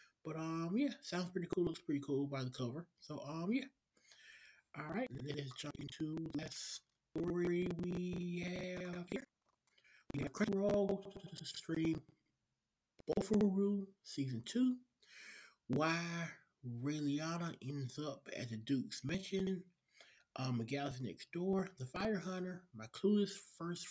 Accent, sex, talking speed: American, male, 135 wpm